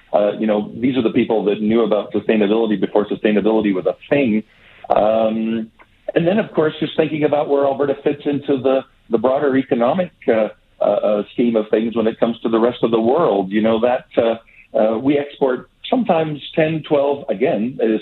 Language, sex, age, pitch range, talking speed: English, male, 50-69, 110-135 Hz, 195 wpm